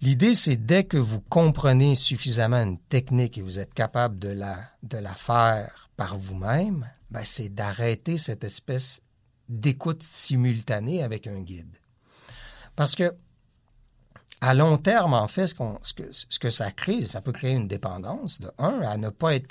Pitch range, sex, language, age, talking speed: 110-145 Hz, male, French, 60-79, 170 wpm